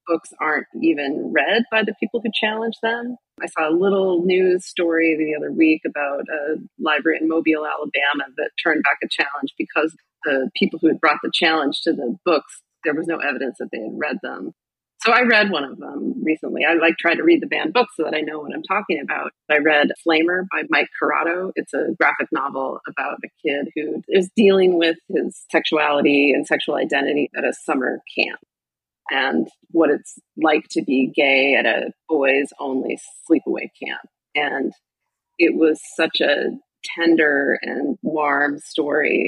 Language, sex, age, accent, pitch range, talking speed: English, female, 30-49, American, 155-185 Hz, 185 wpm